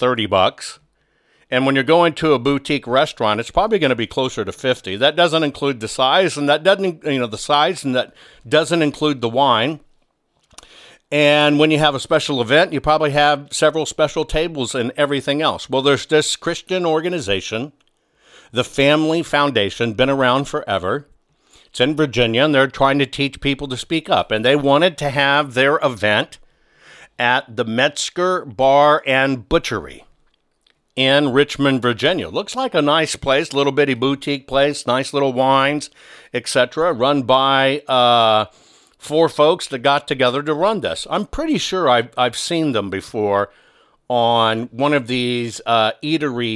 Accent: American